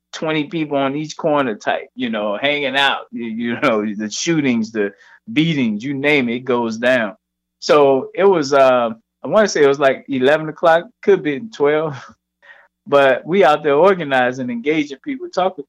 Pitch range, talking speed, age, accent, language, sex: 120-155 Hz, 170 wpm, 20-39, American, English, male